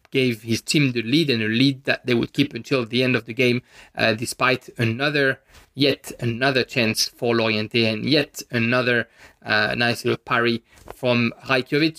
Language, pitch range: English, 120-140 Hz